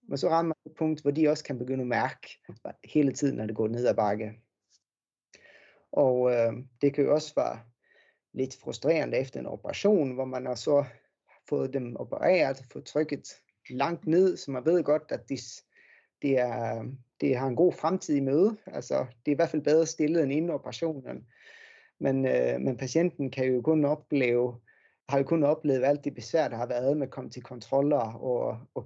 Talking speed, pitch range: 195 wpm, 125-155 Hz